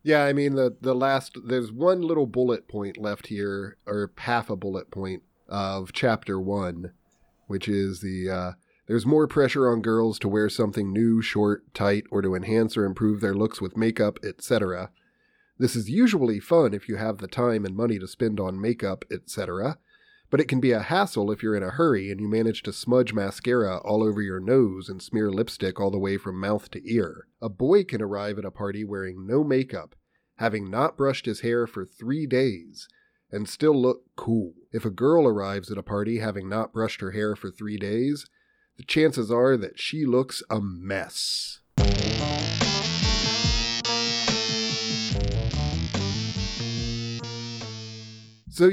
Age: 40-59